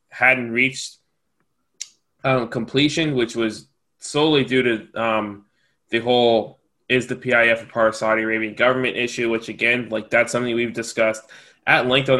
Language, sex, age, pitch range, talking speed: English, male, 20-39, 115-130 Hz, 155 wpm